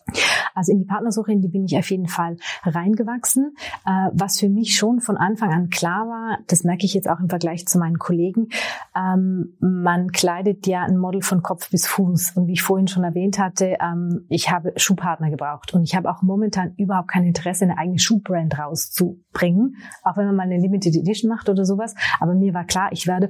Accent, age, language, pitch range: German, 30-49, German, 175-200 Hz